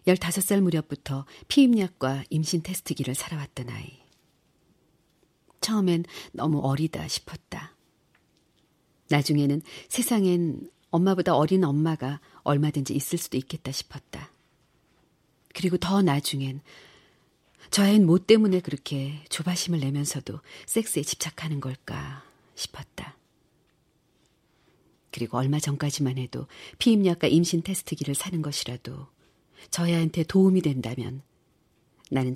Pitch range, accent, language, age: 140-175 Hz, native, Korean, 40-59